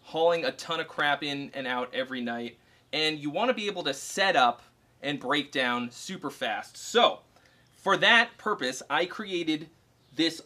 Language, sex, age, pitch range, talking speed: English, male, 30-49, 135-180 Hz, 170 wpm